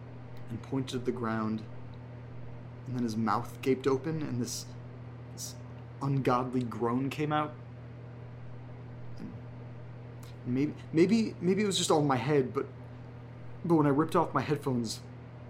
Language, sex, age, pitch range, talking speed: English, male, 30-49, 120-135 Hz, 145 wpm